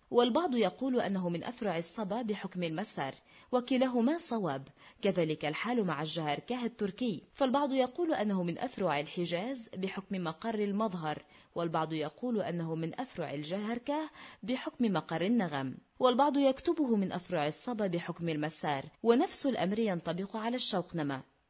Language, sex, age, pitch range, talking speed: Arabic, female, 30-49, 165-235 Hz, 125 wpm